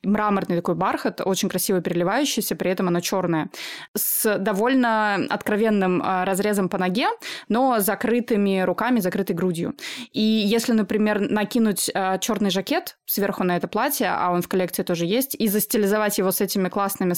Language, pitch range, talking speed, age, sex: Russian, 190-235 Hz, 150 wpm, 20-39, female